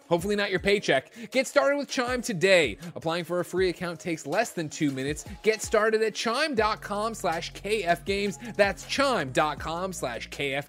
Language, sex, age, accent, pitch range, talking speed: English, male, 30-49, American, 135-205 Hz, 170 wpm